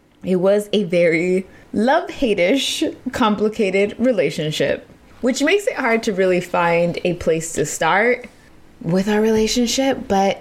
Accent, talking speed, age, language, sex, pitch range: American, 125 wpm, 20-39, English, female, 160-220 Hz